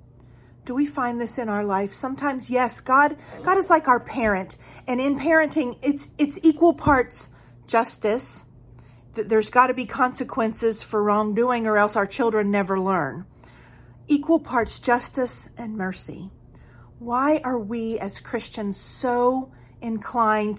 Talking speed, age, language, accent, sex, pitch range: 135 wpm, 40-59, English, American, female, 180-240 Hz